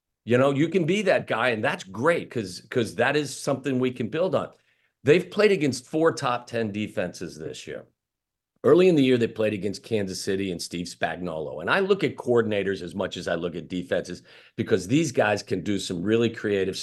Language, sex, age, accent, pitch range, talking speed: English, male, 50-69, American, 95-135 Hz, 215 wpm